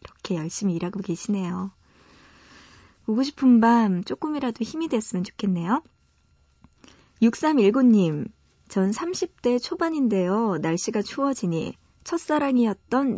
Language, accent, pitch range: Korean, native, 190-240 Hz